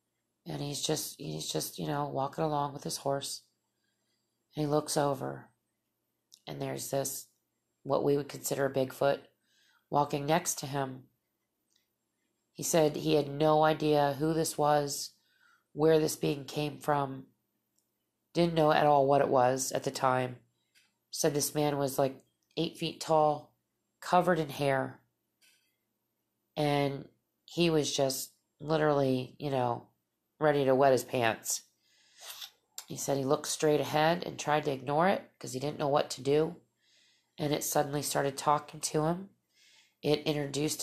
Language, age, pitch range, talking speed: English, 30-49, 130-150 Hz, 150 wpm